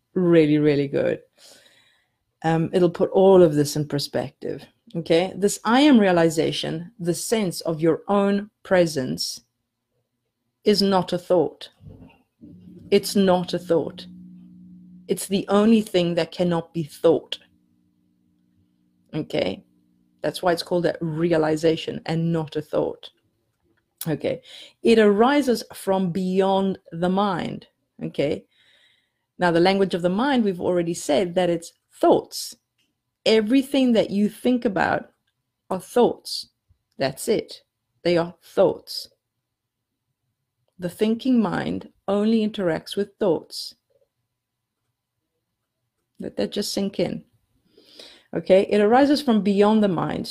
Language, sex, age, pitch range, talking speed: English, female, 40-59, 145-205 Hz, 120 wpm